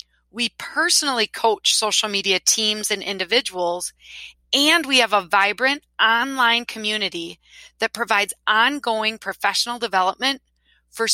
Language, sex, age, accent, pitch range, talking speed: English, female, 30-49, American, 180-230 Hz, 115 wpm